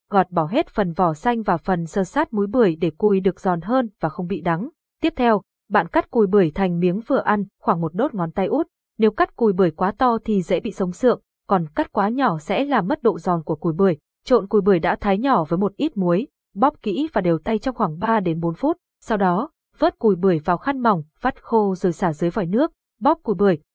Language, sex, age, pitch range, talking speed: Vietnamese, female, 20-39, 180-235 Hz, 250 wpm